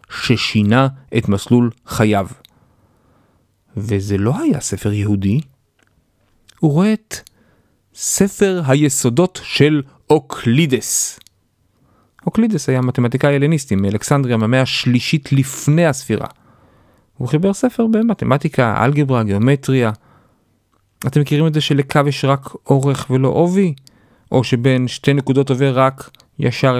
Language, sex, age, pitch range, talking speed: Hebrew, male, 40-59, 125-165 Hz, 105 wpm